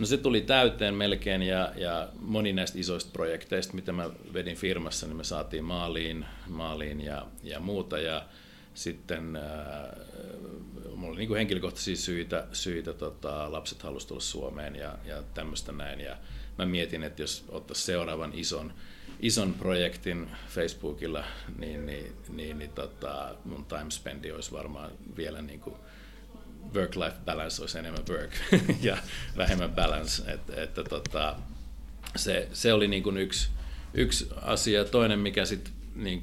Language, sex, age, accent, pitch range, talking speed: Finnish, male, 50-69, native, 75-95 Hz, 145 wpm